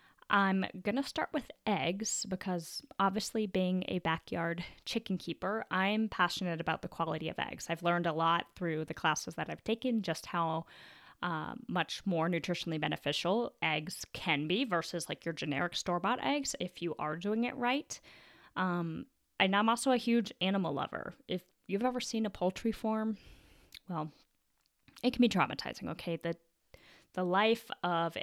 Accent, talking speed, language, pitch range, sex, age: American, 165 wpm, English, 165-220 Hz, female, 10-29